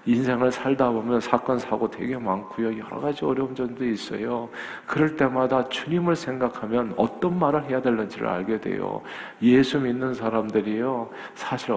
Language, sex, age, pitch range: Korean, male, 50-69, 110-155 Hz